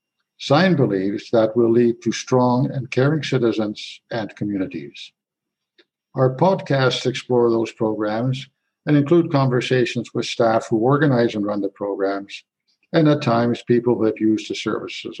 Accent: American